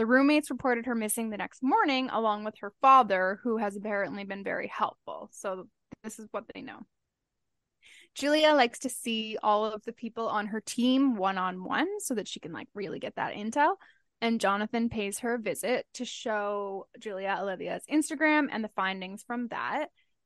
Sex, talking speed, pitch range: female, 180 wpm, 205-265 Hz